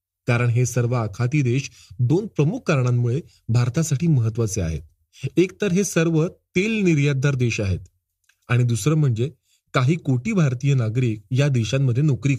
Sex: male